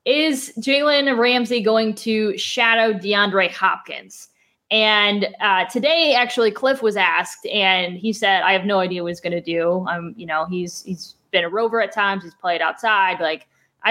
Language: English